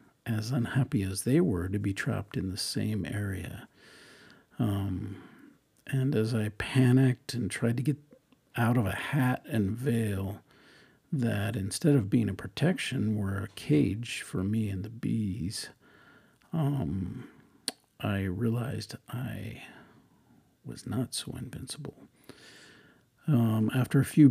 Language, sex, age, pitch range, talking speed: English, male, 50-69, 105-130 Hz, 130 wpm